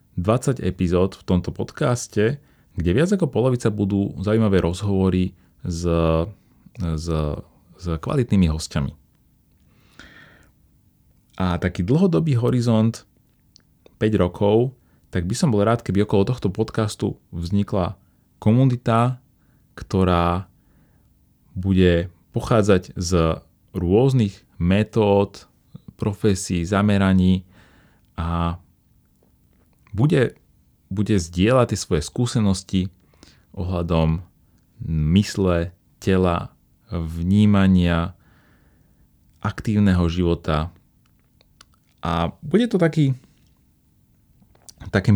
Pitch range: 85-115 Hz